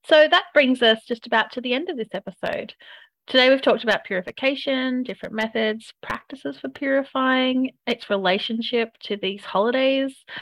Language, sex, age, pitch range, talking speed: English, female, 30-49, 185-255 Hz, 155 wpm